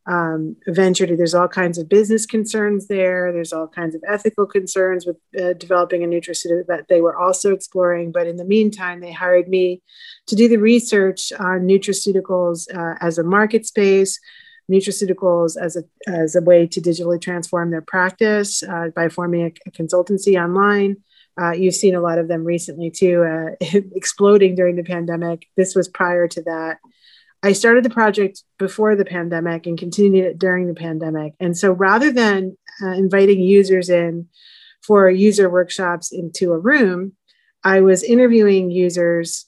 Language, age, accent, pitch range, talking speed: English, 30-49, American, 175-200 Hz, 165 wpm